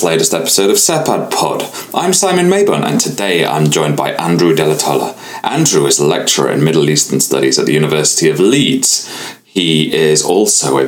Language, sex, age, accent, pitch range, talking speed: English, male, 30-49, British, 75-110 Hz, 175 wpm